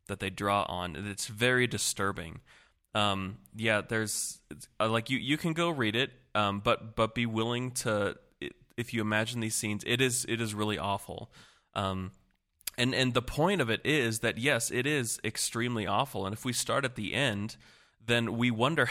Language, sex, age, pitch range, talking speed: English, male, 20-39, 105-125 Hz, 185 wpm